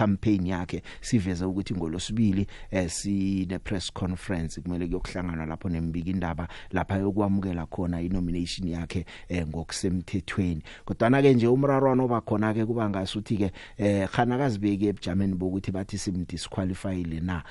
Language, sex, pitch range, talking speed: English, male, 90-110 Hz, 140 wpm